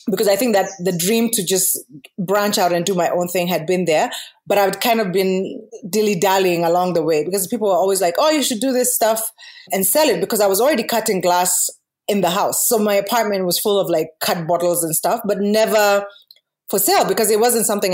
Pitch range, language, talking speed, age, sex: 185-230 Hz, English, 235 wpm, 20-39, female